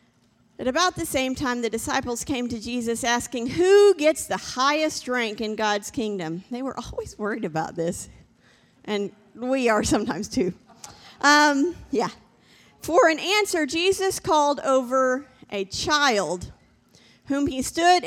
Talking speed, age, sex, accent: 145 wpm, 40-59, female, American